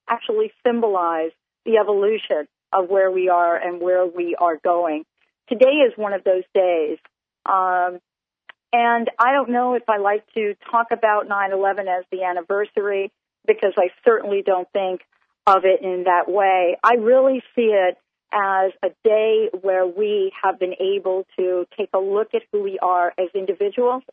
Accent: American